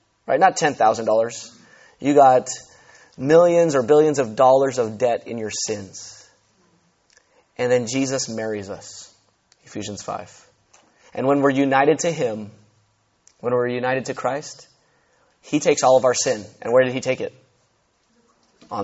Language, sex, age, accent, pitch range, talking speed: English, male, 30-49, American, 135-220 Hz, 145 wpm